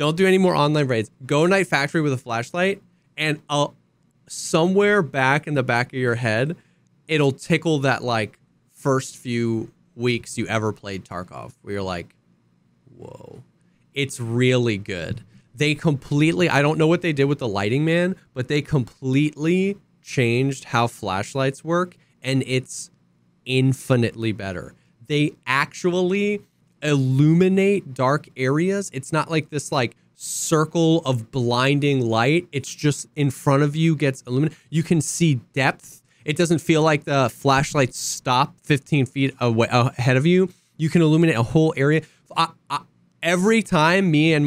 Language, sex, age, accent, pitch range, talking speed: English, male, 20-39, American, 125-160 Hz, 150 wpm